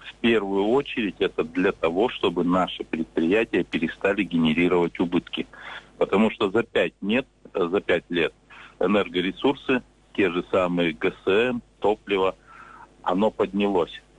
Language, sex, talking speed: Russian, male, 120 wpm